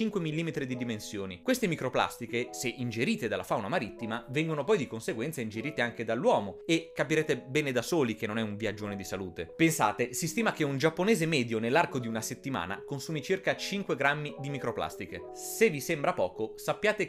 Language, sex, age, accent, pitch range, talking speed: Italian, male, 30-49, native, 115-170 Hz, 185 wpm